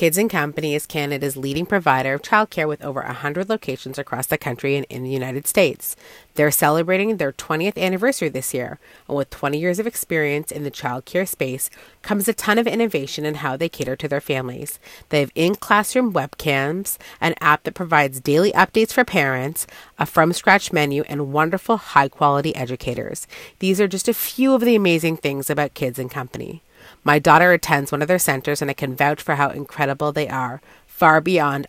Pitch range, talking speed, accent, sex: 140-190 Hz, 190 wpm, American, female